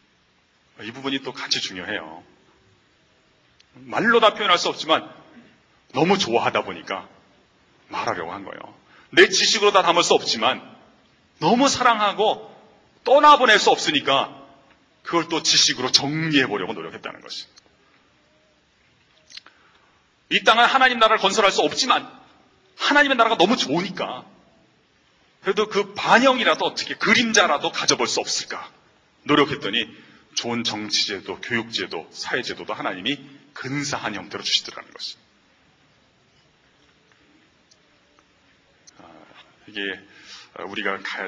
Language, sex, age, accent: Korean, male, 40-59, native